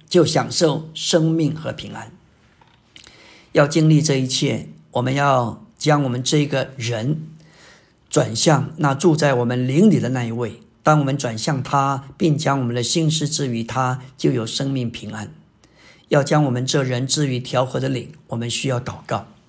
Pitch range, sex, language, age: 125-155 Hz, male, Chinese, 50-69